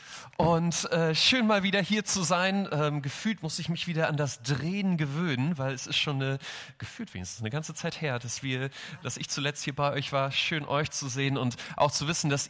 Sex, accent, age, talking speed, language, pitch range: male, German, 30-49, 225 wpm, German, 135-165 Hz